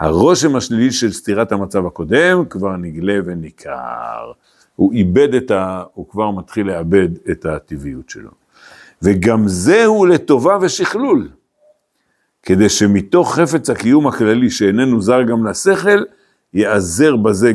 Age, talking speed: 60-79, 120 wpm